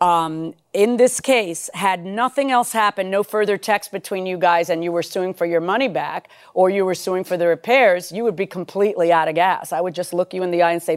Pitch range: 185-235 Hz